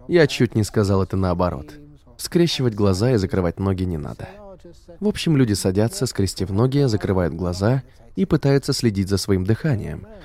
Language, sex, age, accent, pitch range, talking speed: Russian, male, 20-39, native, 95-140 Hz, 160 wpm